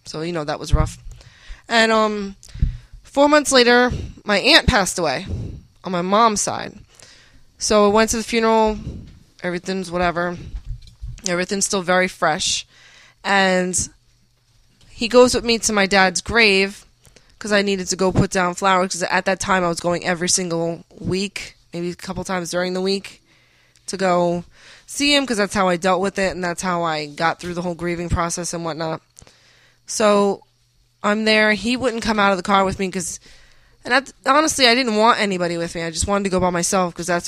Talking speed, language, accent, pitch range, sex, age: 190 wpm, English, American, 170-205 Hz, female, 20-39